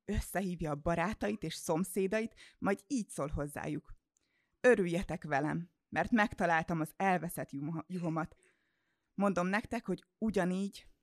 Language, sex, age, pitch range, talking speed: Hungarian, female, 20-39, 160-200 Hz, 110 wpm